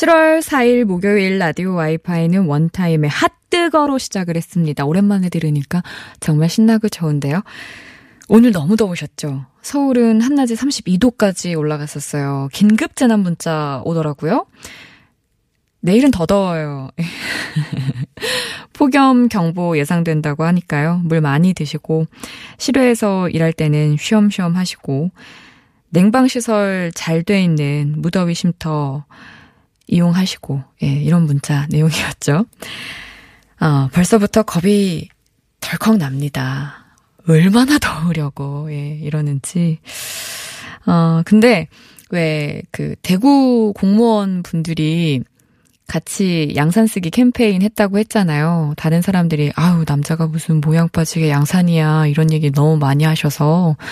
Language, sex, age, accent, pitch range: Korean, female, 20-39, native, 155-210 Hz